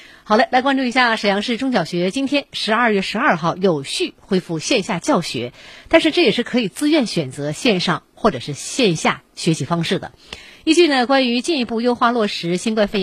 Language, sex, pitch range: Chinese, female, 165-255 Hz